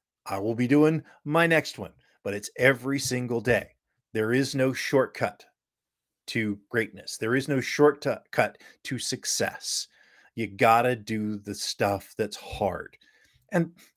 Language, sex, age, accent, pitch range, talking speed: English, male, 40-59, American, 115-150 Hz, 140 wpm